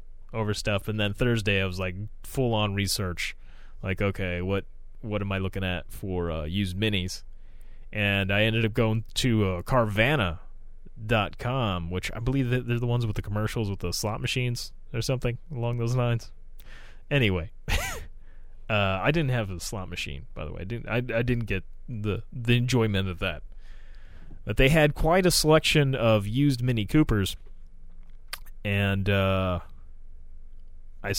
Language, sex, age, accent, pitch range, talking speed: English, male, 20-39, American, 90-120 Hz, 165 wpm